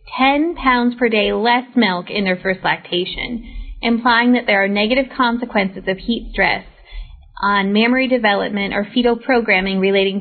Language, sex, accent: English, female, American